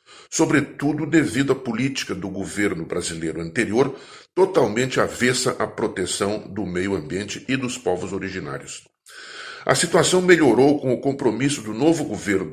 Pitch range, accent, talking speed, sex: 95-135 Hz, Brazilian, 135 wpm, male